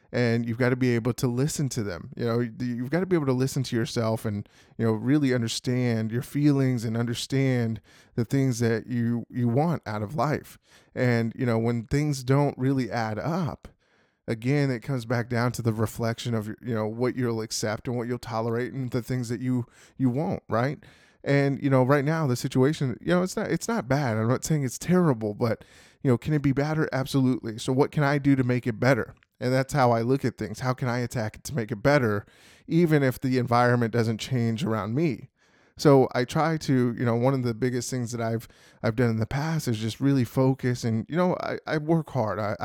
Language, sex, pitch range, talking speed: English, male, 115-135 Hz, 230 wpm